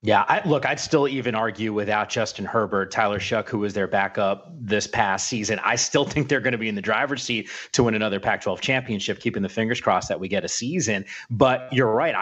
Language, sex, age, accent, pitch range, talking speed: English, male, 30-49, American, 105-130 Hz, 230 wpm